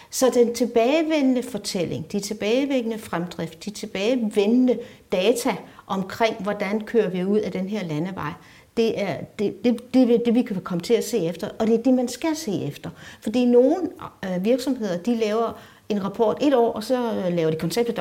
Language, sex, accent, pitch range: Danish, female, native, 190-250 Hz